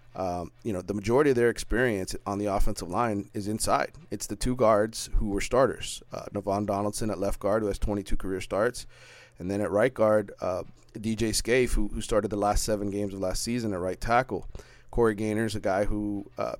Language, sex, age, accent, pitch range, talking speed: English, male, 30-49, American, 100-115 Hz, 215 wpm